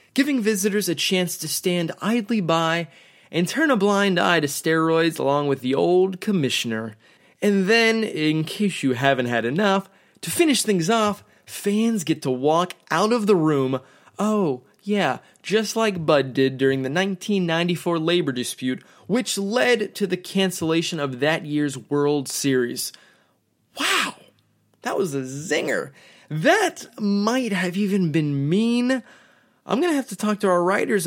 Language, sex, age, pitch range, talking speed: English, male, 20-39, 150-210 Hz, 155 wpm